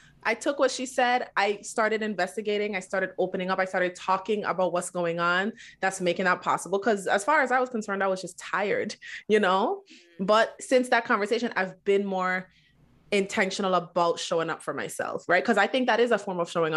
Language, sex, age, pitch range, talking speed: English, female, 20-39, 175-220 Hz, 210 wpm